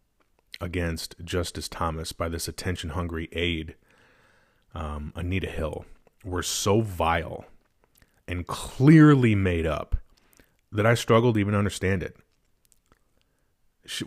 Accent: American